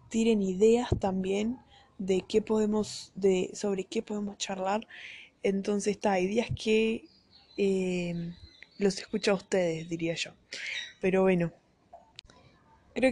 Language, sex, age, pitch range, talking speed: Portuguese, female, 10-29, 195-230 Hz, 115 wpm